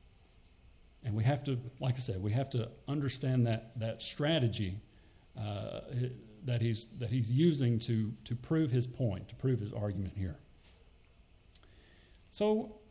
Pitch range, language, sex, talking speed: 105-140 Hz, English, male, 145 wpm